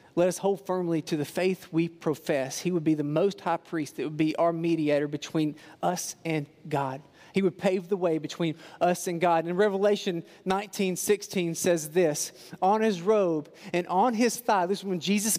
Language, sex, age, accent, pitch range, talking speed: English, male, 40-59, American, 150-180 Hz, 200 wpm